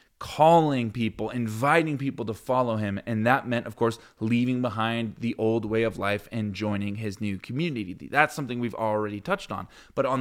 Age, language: 20-39, English